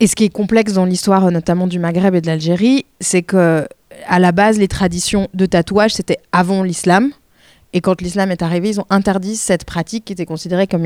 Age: 20-39